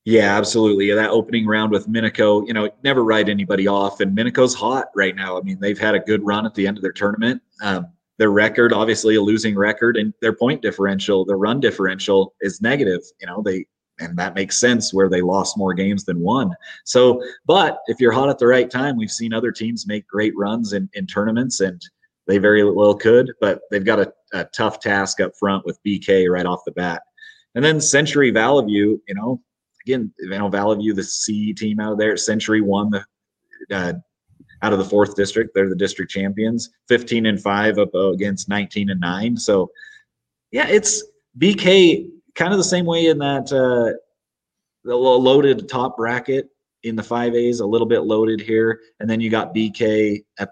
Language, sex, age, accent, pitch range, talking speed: English, male, 30-49, American, 100-120 Hz, 200 wpm